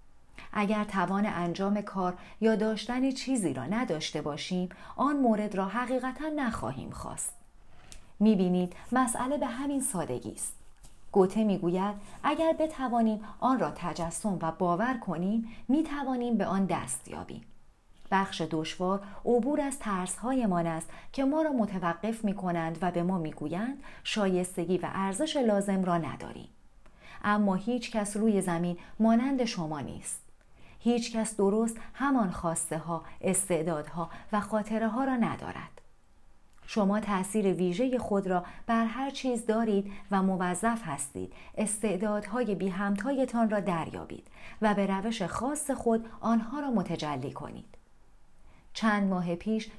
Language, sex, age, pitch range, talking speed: Persian, female, 40-59, 175-230 Hz, 130 wpm